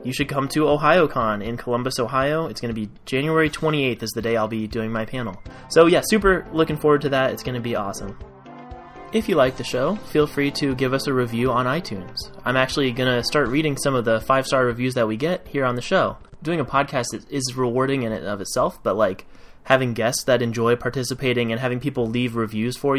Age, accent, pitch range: 20-39, American, 115-140 Hz